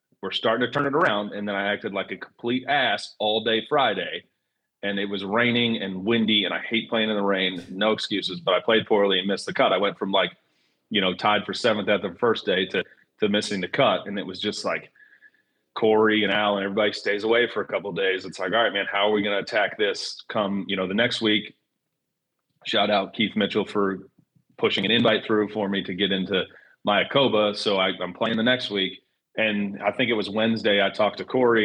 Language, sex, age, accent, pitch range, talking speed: English, male, 30-49, American, 100-125 Hz, 235 wpm